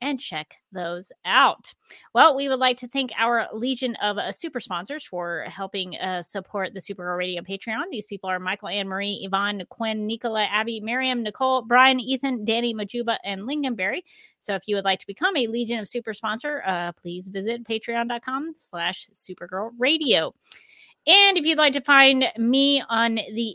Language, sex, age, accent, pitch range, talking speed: English, female, 30-49, American, 195-255 Hz, 175 wpm